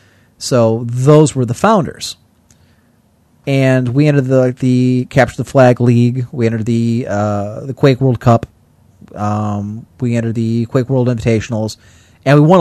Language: English